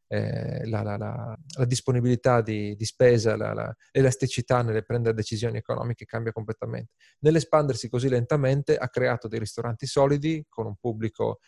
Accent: native